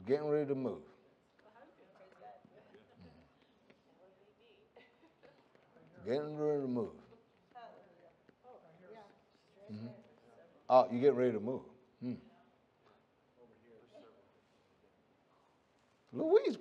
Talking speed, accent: 60 wpm, American